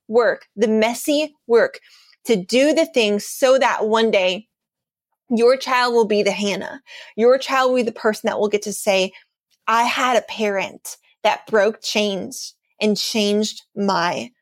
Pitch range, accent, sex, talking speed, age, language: 200-250 Hz, American, female, 160 wpm, 20-39, English